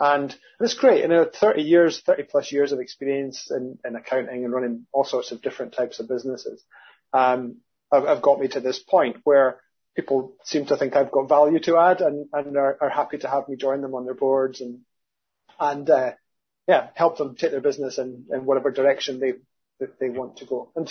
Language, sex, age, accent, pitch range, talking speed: English, male, 30-49, British, 130-165 Hz, 220 wpm